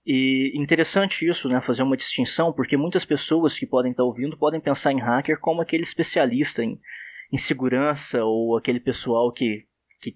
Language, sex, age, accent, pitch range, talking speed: Portuguese, male, 20-39, Brazilian, 130-175 Hz, 170 wpm